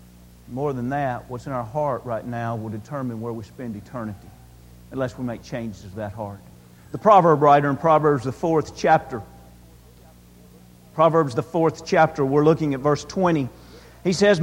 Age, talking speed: 50-69, 170 wpm